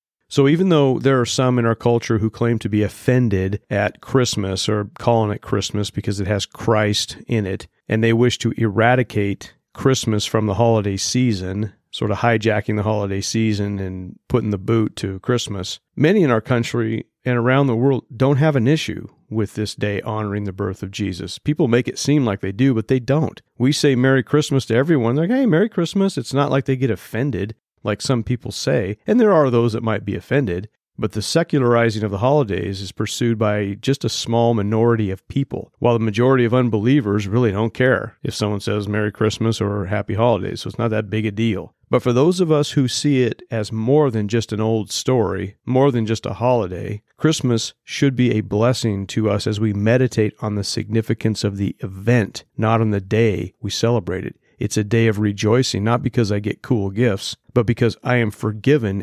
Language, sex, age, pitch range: English, male, 40-59, 105-125 Hz